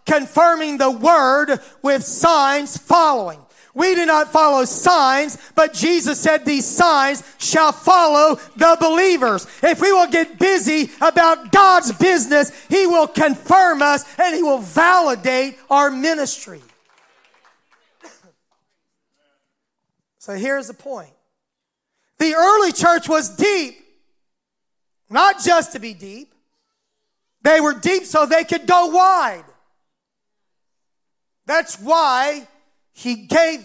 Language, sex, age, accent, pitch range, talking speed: English, male, 40-59, American, 230-315 Hz, 115 wpm